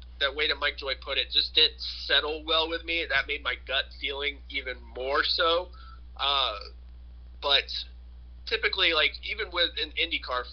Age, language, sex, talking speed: 30-49, English, male, 170 wpm